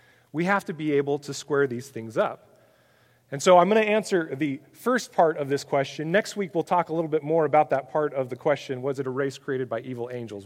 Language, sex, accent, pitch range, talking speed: English, male, American, 135-180 Hz, 250 wpm